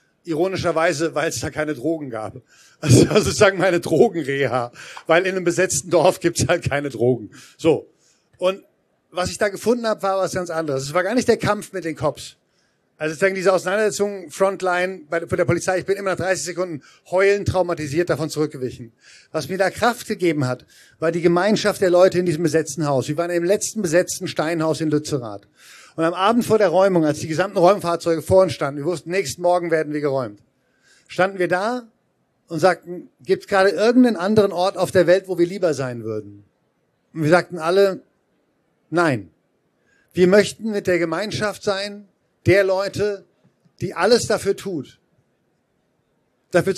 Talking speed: 180 wpm